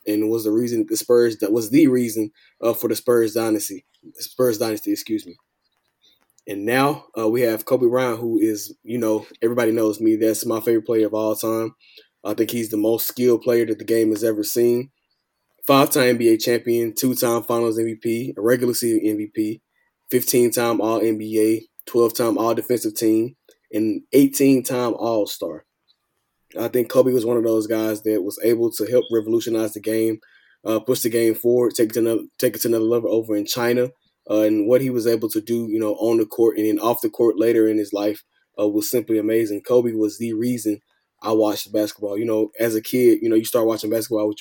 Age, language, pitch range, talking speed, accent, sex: 20-39, English, 110-120 Hz, 210 wpm, American, male